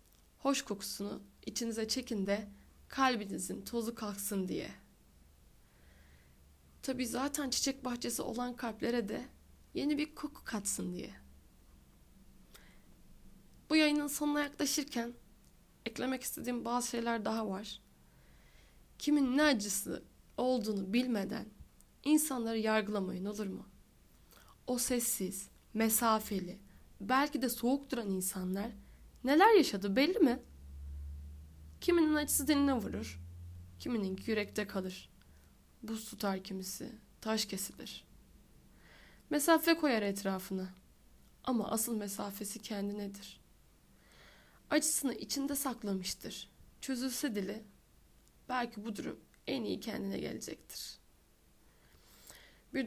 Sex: female